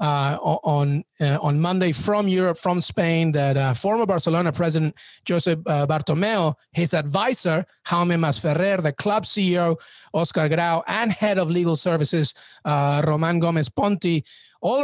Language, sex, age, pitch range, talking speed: English, male, 30-49, 150-180 Hz, 145 wpm